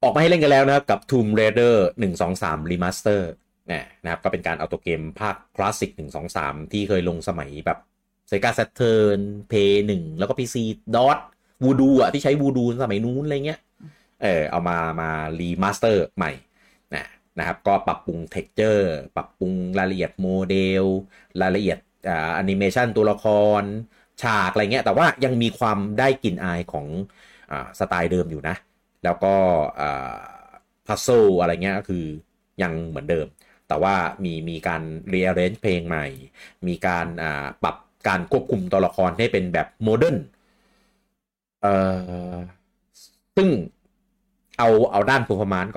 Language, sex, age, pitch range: Thai, male, 30-49, 85-110 Hz